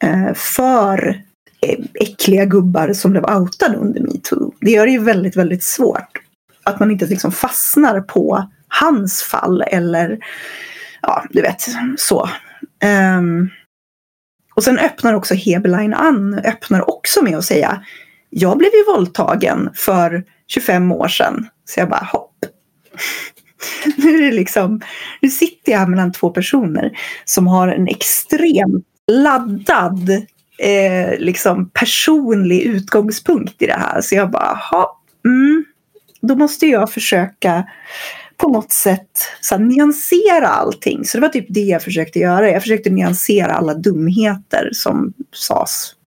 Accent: native